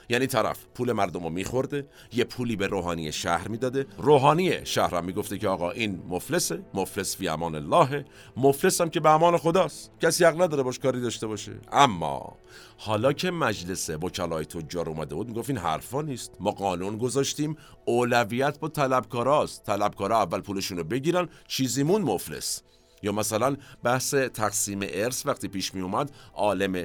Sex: male